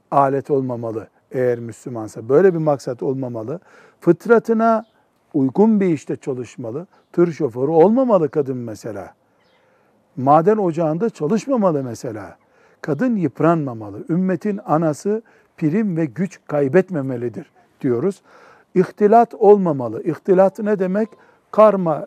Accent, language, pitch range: native, Turkish, 145-195 Hz